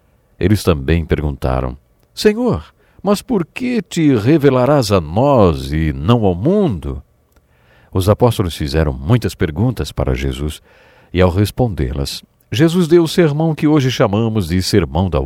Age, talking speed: 50-69, 140 wpm